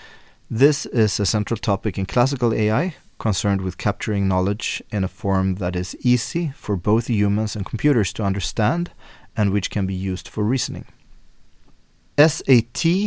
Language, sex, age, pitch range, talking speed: English, male, 30-49, 95-115 Hz, 150 wpm